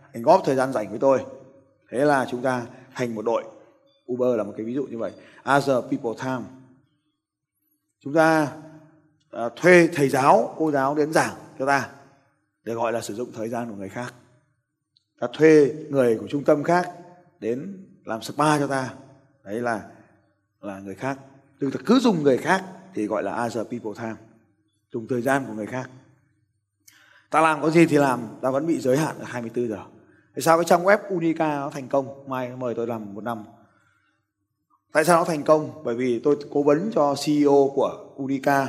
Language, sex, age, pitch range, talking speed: Vietnamese, male, 20-39, 110-145 Hz, 190 wpm